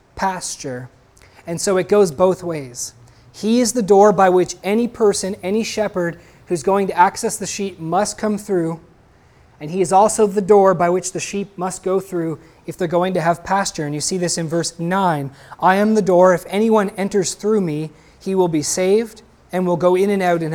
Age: 20-39